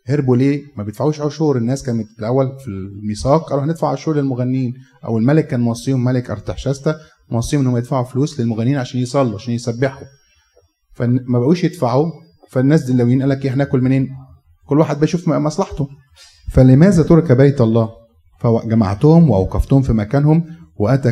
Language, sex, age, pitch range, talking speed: Arabic, male, 30-49, 115-140 Hz, 150 wpm